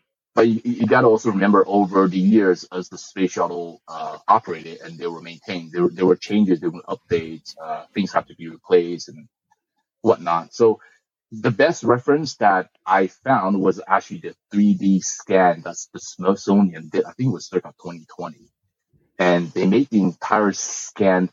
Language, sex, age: English, male, 30-49